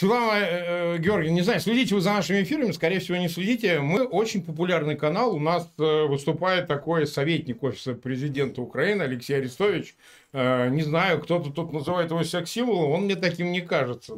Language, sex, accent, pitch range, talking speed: Russian, male, native, 140-180 Hz, 170 wpm